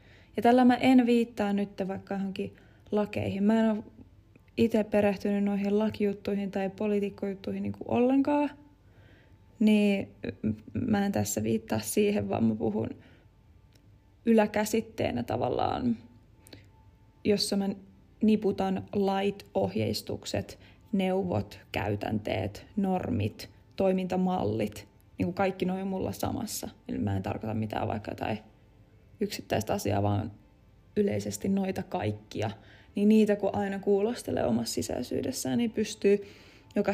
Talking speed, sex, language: 115 wpm, female, Finnish